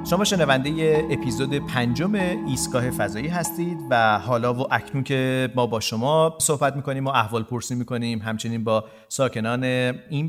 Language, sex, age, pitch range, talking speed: Persian, male, 40-59, 110-145 Hz, 155 wpm